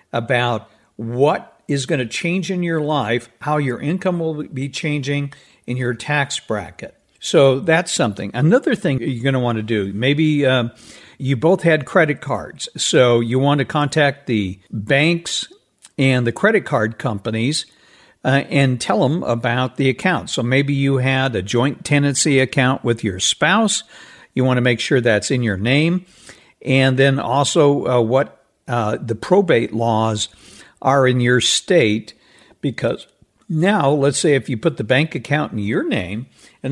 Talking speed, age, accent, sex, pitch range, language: 170 wpm, 60-79, American, male, 125-155 Hz, English